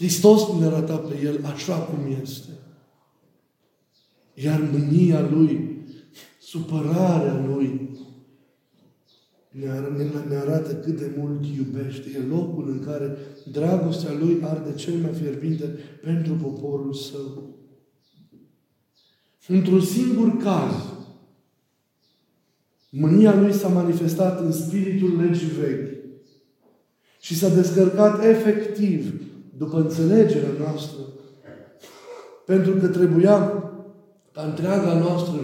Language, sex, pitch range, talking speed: Romanian, male, 140-170 Hz, 95 wpm